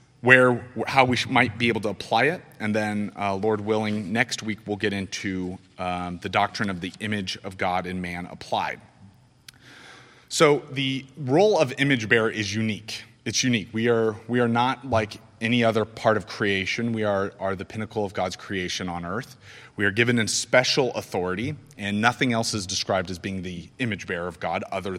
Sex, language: male, English